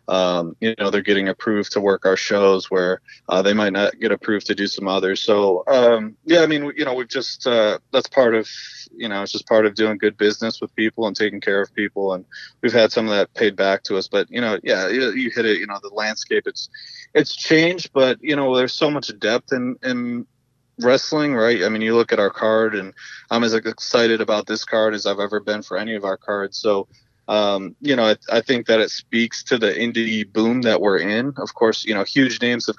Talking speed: 245 wpm